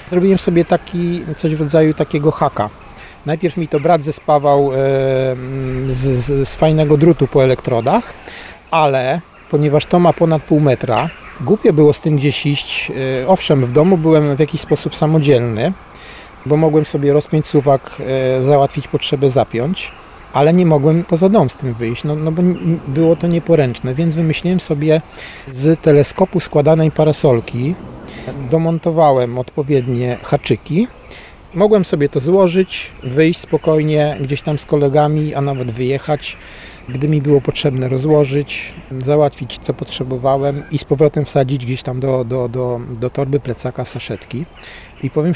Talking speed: 145 wpm